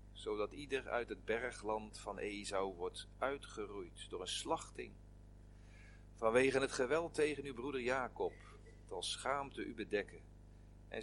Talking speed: 130 wpm